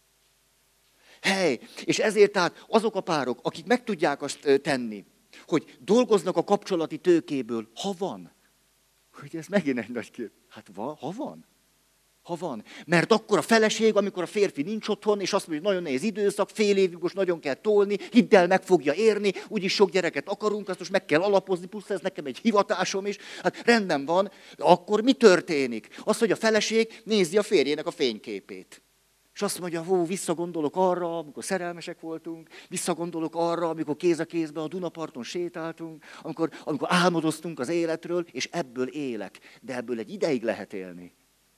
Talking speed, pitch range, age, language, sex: 170 wpm, 160-200 Hz, 50-69, Hungarian, male